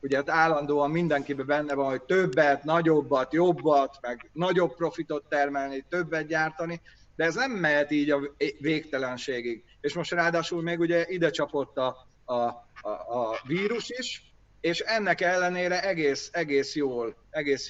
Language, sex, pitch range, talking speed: Hungarian, male, 140-170 Hz, 145 wpm